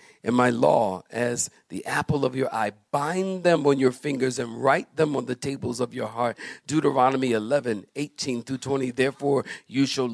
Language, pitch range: English, 120-140 Hz